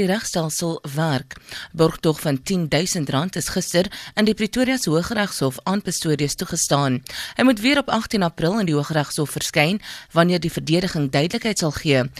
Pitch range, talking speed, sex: 155-205 Hz, 155 wpm, female